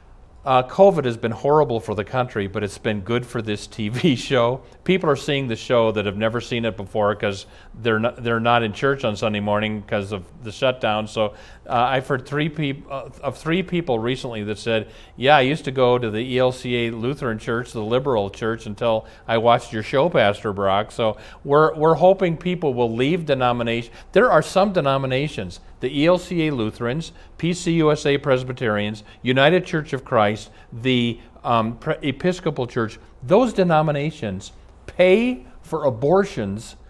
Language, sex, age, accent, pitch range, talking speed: English, male, 40-59, American, 110-150 Hz, 170 wpm